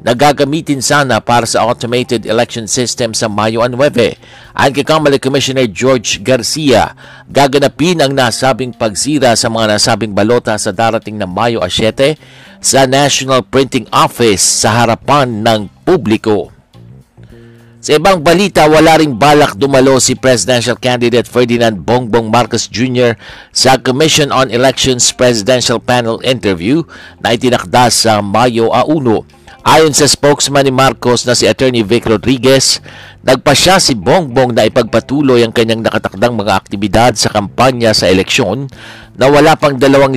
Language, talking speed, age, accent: Filipino, 135 wpm, 50-69, native